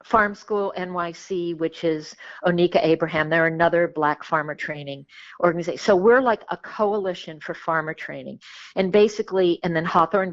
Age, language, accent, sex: 50-69, English, American, female